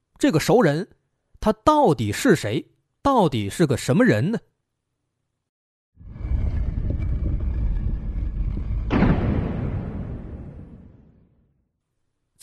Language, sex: Chinese, male